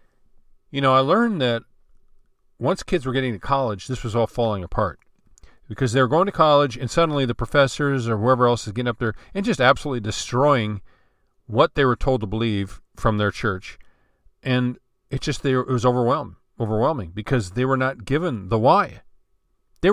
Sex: male